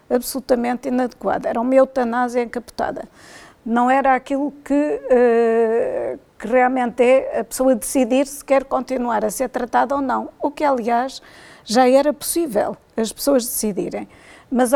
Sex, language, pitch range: female, Portuguese, 225-260 Hz